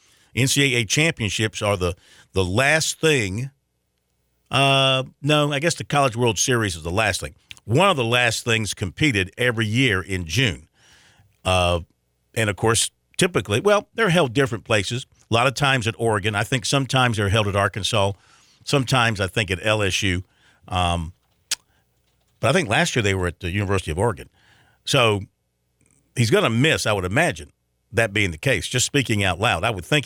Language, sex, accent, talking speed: English, male, American, 180 wpm